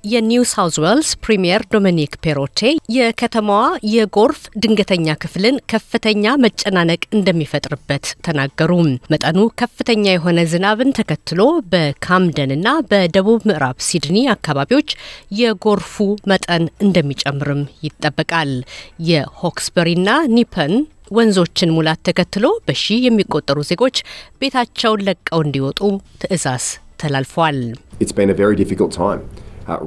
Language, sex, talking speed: Amharic, female, 80 wpm